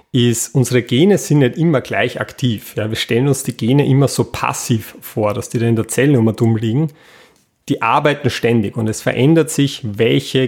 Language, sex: German, male